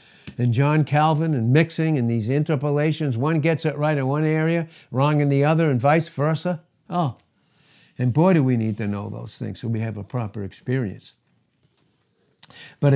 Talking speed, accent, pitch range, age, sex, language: 175 wpm, American, 125-165 Hz, 60-79, male, English